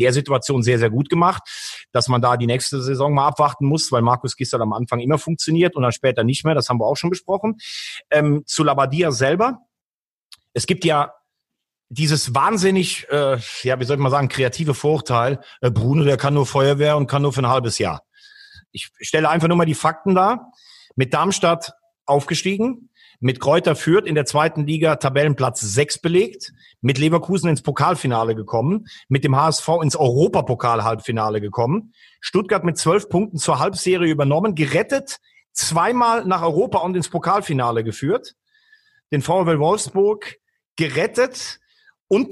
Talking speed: 165 wpm